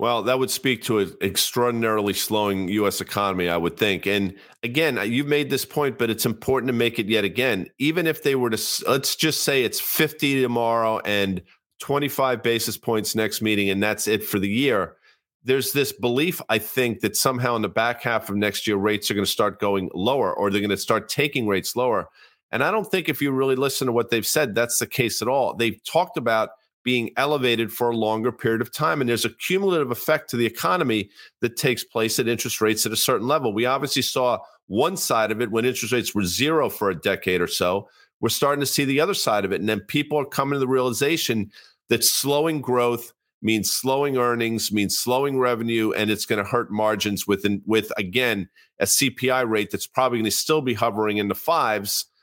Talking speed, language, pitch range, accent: 220 wpm, English, 105-135 Hz, American